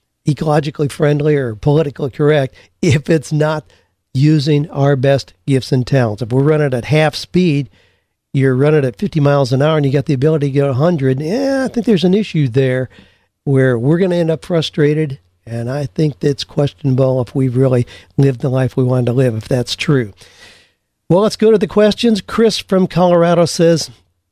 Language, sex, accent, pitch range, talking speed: English, male, American, 130-160 Hz, 195 wpm